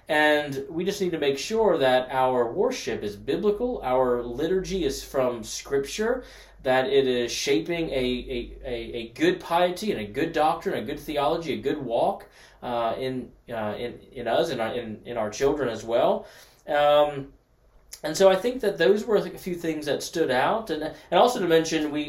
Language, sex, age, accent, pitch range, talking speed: English, male, 20-39, American, 120-150 Hz, 190 wpm